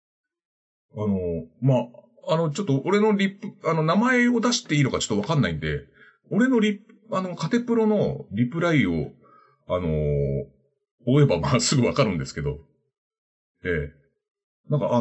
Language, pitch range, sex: Japanese, 125-205 Hz, male